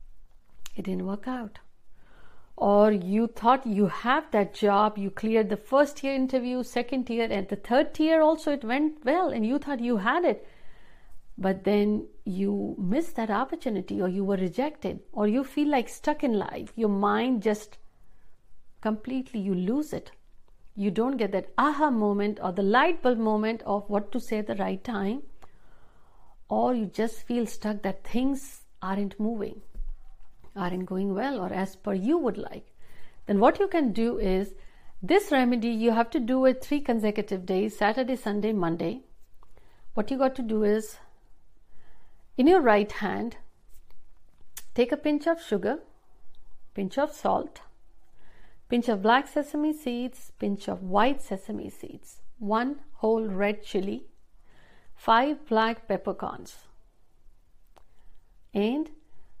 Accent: native